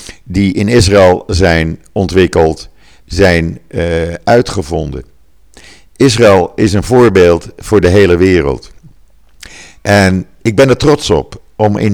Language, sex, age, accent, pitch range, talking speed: Dutch, male, 50-69, Dutch, 85-105 Hz, 120 wpm